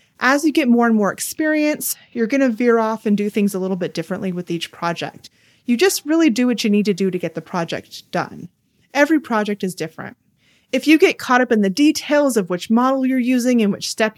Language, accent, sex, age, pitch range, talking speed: English, American, female, 30-49, 190-250 Hz, 235 wpm